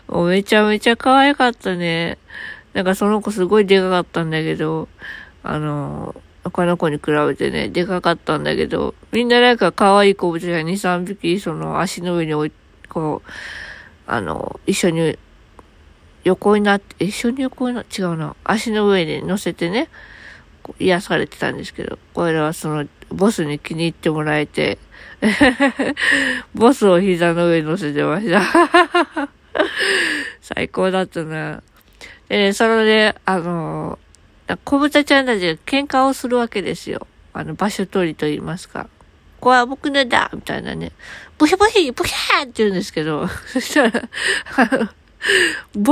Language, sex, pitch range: Japanese, female, 175-260 Hz